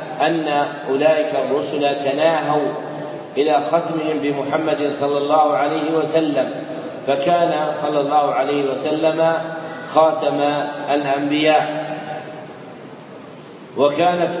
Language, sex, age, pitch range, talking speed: Arabic, male, 40-59, 145-155 Hz, 80 wpm